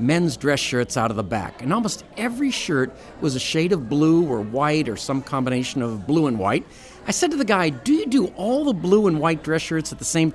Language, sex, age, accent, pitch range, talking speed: English, male, 50-69, American, 135-220 Hz, 250 wpm